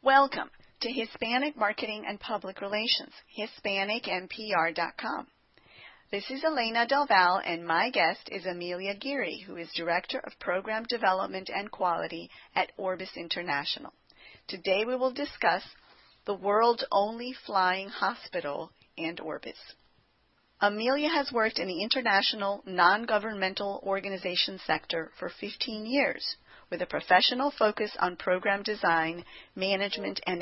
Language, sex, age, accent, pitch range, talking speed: English, female, 40-59, American, 185-240 Hz, 120 wpm